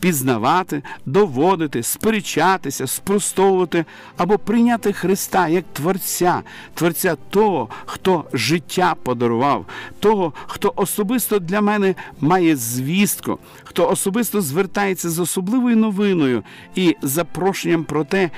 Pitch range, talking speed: 150-200 Hz, 100 wpm